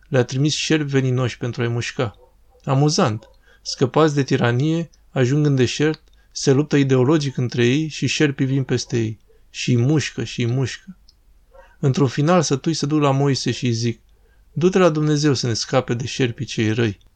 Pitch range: 125-155 Hz